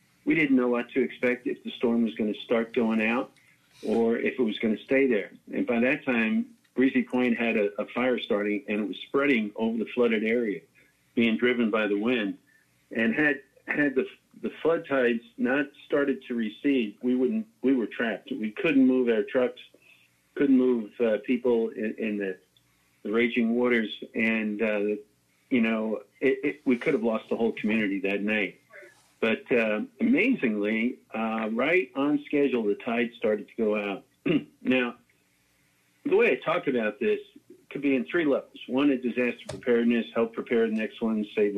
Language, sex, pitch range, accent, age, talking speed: English, male, 110-135 Hz, American, 50-69, 185 wpm